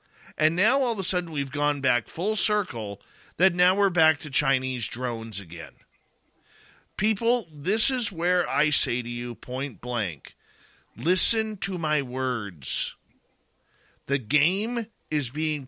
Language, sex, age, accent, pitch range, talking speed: English, male, 40-59, American, 120-160 Hz, 140 wpm